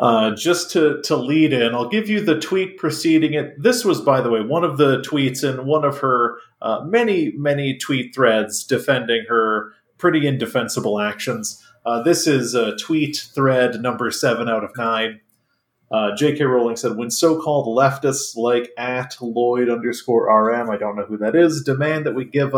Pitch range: 115-145 Hz